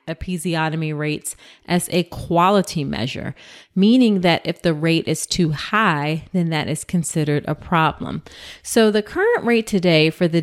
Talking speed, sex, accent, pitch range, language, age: 155 wpm, female, American, 150-185 Hz, English, 30-49